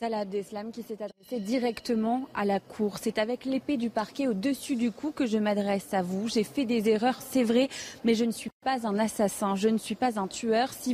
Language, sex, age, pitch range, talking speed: French, female, 30-49, 210-260 Hz, 225 wpm